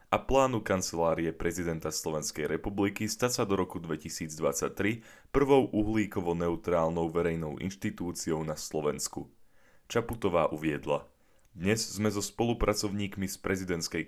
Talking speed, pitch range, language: 105 wpm, 85-110 Hz, Slovak